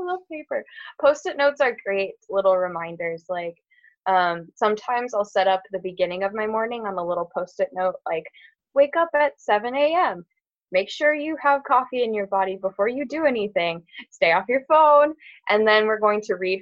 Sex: female